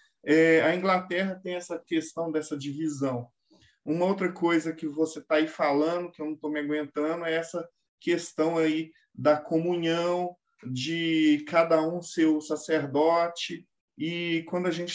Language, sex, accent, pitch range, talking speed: Portuguese, male, Brazilian, 155-185 Hz, 150 wpm